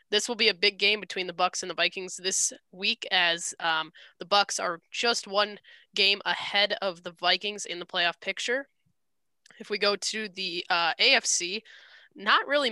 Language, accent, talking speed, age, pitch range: English, American, 185 wpm, 10-29, 180-210 Hz